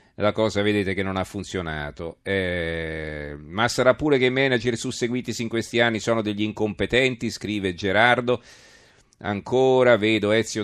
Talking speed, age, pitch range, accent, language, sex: 145 wpm, 40-59, 95-115 Hz, native, Italian, male